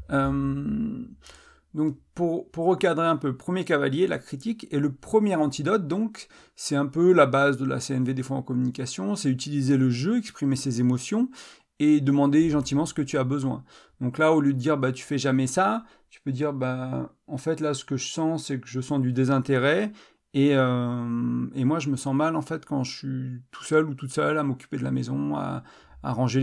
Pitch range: 130-150 Hz